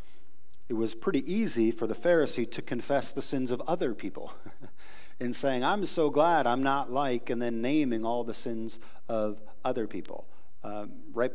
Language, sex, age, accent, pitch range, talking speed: English, male, 40-59, American, 110-135 Hz, 175 wpm